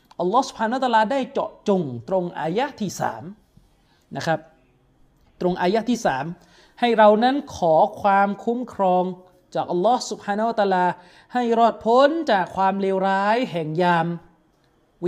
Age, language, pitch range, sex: 30-49, Thai, 170-215 Hz, male